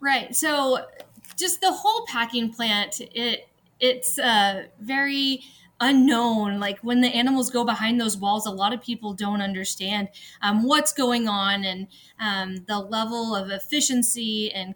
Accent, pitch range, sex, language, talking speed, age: American, 195-245 Hz, female, English, 150 wpm, 20-39